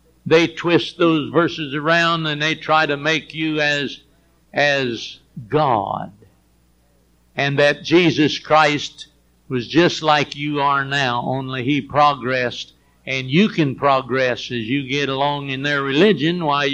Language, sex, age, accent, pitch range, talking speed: English, male, 60-79, American, 145-220 Hz, 140 wpm